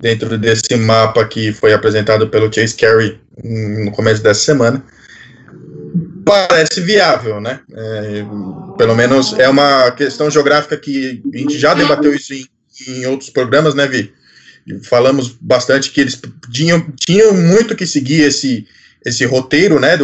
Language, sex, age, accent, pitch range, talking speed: Portuguese, male, 20-39, Brazilian, 125-165 Hz, 145 wpm